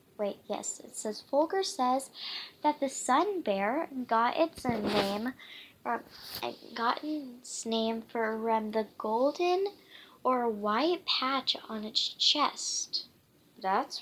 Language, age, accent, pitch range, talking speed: English, 10-29, American, 225-295 Hz, 115 wpm